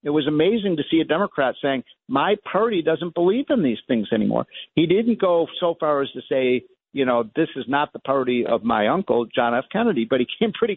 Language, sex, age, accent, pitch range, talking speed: English, male, 50-69, American, 135-200 Hz, 230 wpm